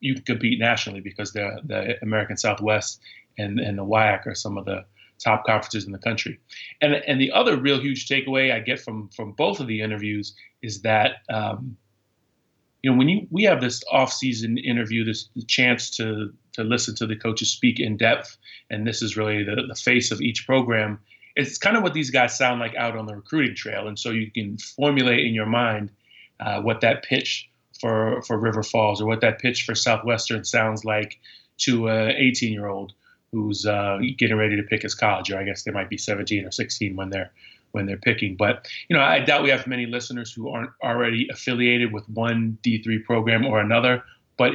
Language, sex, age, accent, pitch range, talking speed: English, male, 30-49, American, 105-125 Hz, 205 wpm